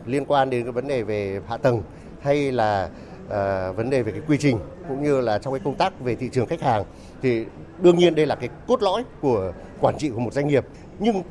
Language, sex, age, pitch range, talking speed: Vietnamese, male, 30-49, 125-180 Hz, 240 wpm